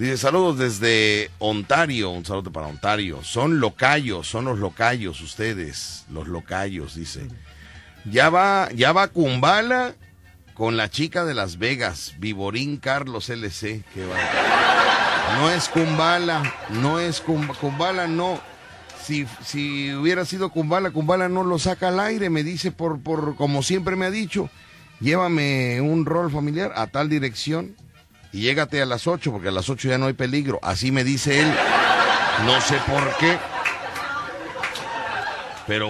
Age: 40-59